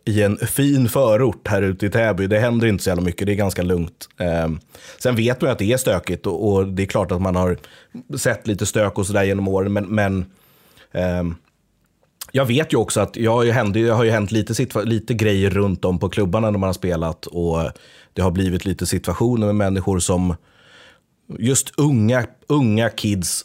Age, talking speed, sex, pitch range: 30-49, 205 wpm, male, 90-110 Hz